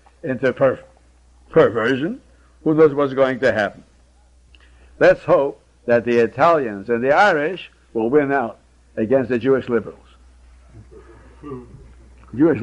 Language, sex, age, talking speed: English, male, 60-79, 115 wpm